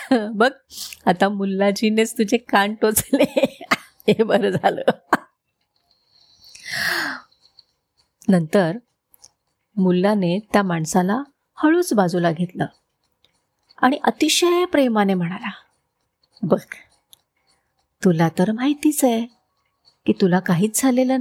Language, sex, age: Marathi, female, 30-49